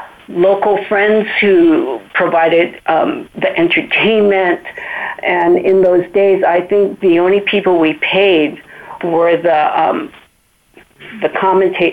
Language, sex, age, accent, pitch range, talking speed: English, female, 50-69, American, 170-210 Hz, 115 wpm